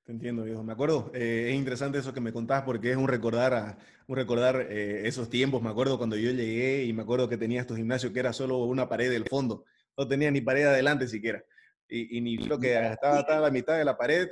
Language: Spanish